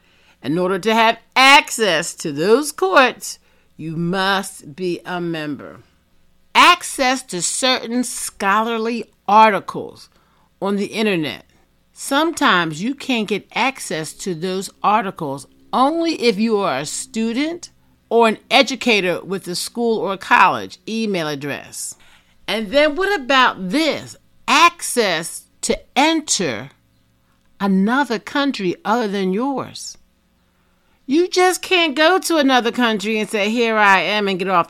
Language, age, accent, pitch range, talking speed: English, 50-69, American, 170-260 Hz, 125 wpm